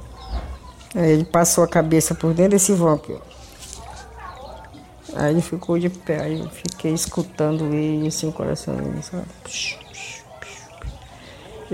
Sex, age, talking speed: female, 60-79, 135 wpm